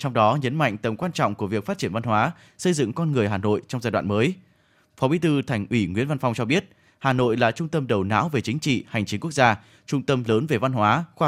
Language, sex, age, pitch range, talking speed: Vietnamese, male, 20-39, 115-150 Hz, 285 wpm